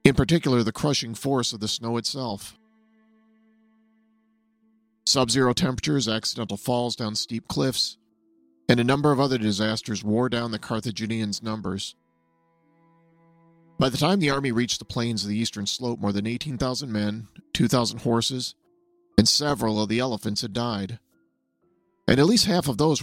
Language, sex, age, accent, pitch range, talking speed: English, male, 40-59, American, 110-150 Hz, 150 wpm